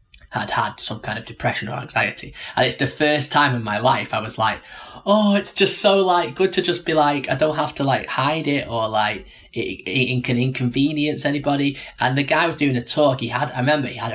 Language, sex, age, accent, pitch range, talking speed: English, male, 10-29, British, 120-150 Hz, 240 wpm